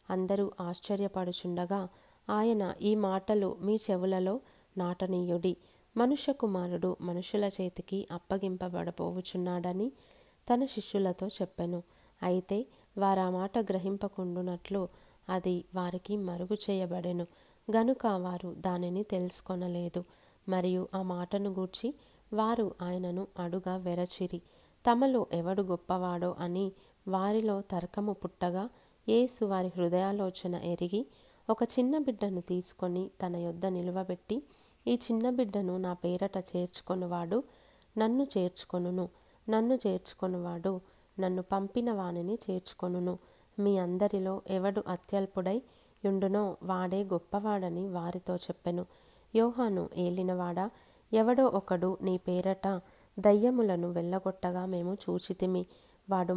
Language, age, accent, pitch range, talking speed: Telugu, 30-49, native, 180-205 Hz, 95 wpm